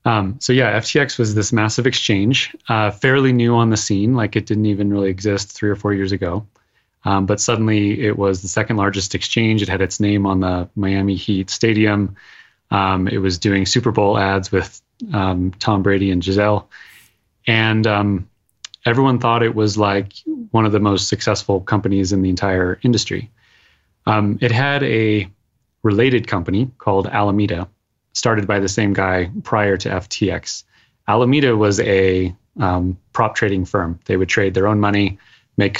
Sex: male